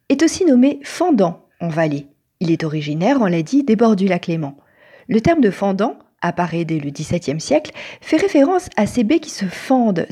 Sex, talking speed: female, 200 wpm